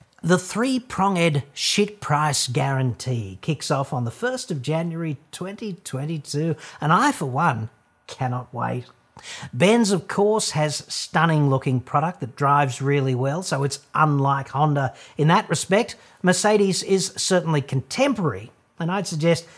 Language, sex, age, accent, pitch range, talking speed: English, male, 40-59, Australian, 130-185 Hz, 135 wpm